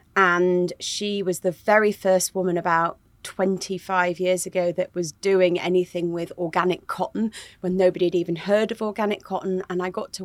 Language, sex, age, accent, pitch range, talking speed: English, female, 30-49, British, 175-200 Hz, 175 wpm